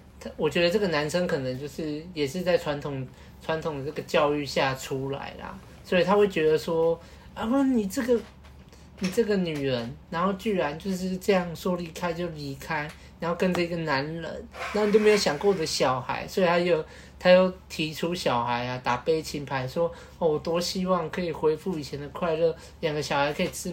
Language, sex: Chinese, male